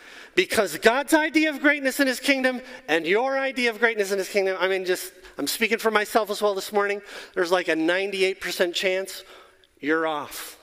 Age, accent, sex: 40-59, American, male